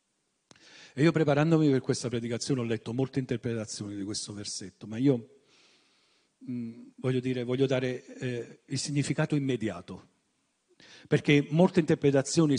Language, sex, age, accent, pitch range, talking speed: Italian, male, 40-59, native, 110-140 Hz, 130 wpm